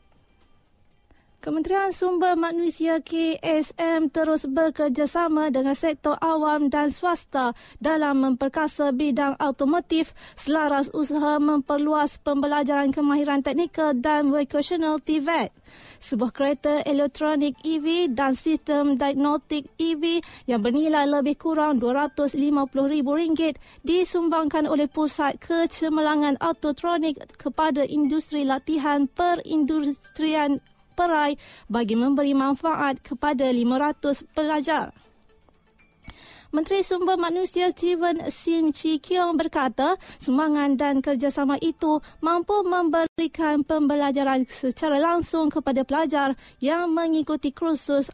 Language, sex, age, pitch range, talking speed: Malay, female, 20-39, 280-325 Hz, 95 wpm